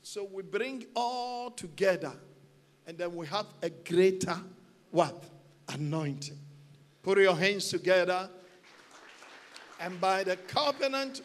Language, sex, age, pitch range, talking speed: English, male, 50-69, 180-245 Hz, 110 wpm